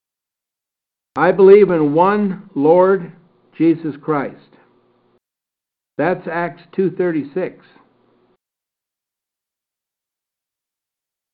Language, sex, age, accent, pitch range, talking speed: English, male, 60-79, American, 150-200 Hz, 55 wpm